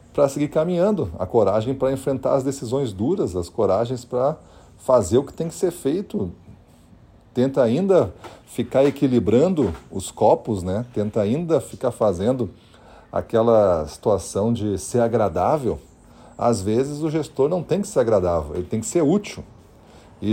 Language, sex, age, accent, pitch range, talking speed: Portuguese, male, 40-59, Brazilian, 110-145 Hz, 150 wpm